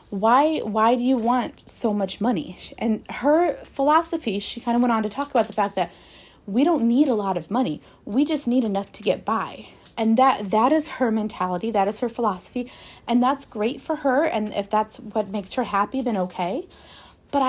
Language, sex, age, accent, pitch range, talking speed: English, female, 20-39, American, 205-265 Hz, 210 wpm